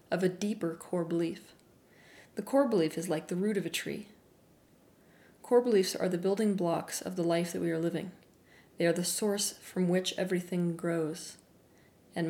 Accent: American